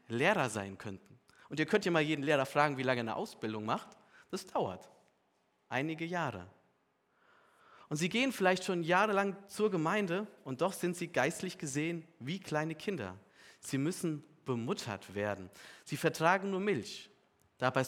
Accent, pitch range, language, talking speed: German, 120-180 Hz, German, 160 wpm